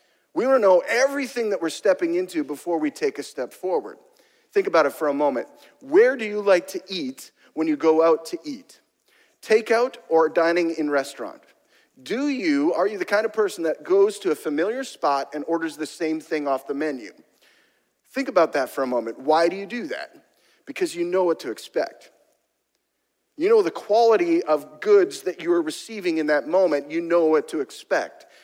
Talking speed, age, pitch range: 200 wpm, 40-59, 165-275 Hz